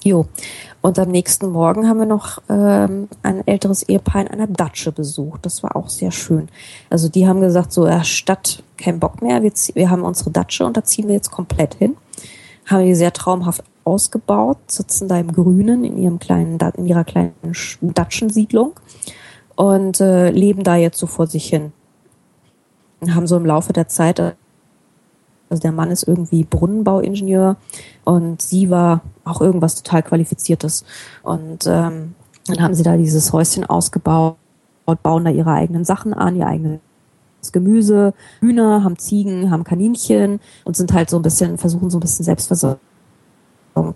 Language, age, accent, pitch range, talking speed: German, 20-39, German, 160-190 Hz, 170 wpm